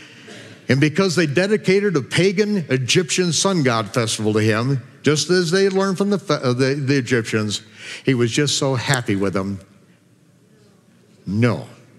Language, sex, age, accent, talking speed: English, male, 60-79, American, 140 wpm